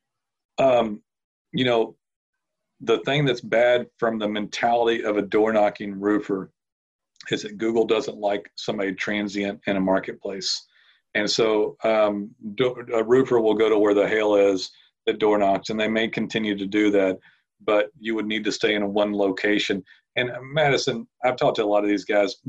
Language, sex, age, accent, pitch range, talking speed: English, male, 40-59, American, 105-135 Hz, 175 wpm